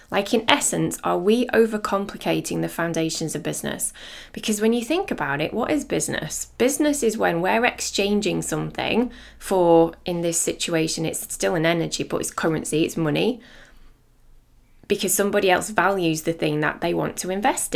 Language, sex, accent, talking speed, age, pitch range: English, female, British, 165 wpm, 20-39, 165-205 Hz